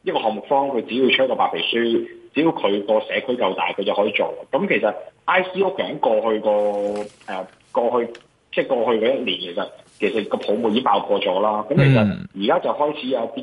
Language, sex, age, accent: Chinese, male, 20-39, native